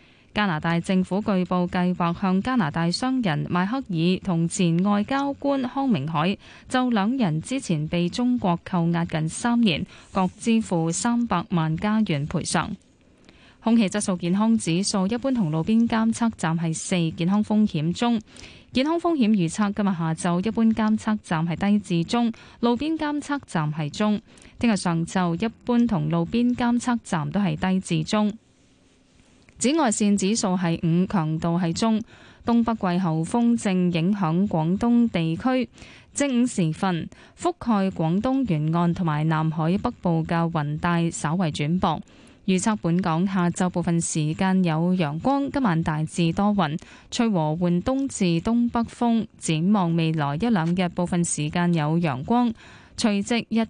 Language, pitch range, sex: Chinese, 170-225 Hz, female